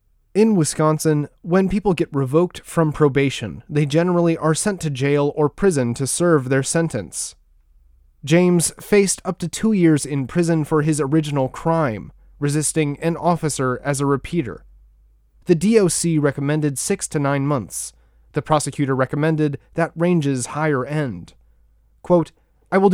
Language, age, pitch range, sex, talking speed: English, 30-49, 140-175 Hz, male, 145 wpm